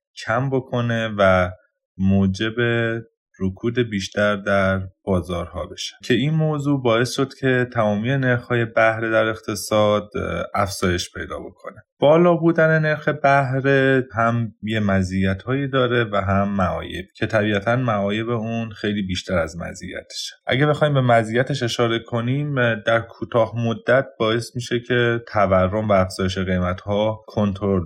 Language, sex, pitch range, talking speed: Persian, male, 100-120 Hz, 130 wpm